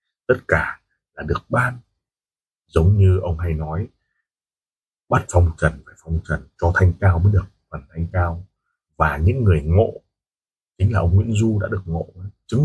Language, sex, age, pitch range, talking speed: Vietnamese, male, 30-49, 85-110 Hz, 175 wpm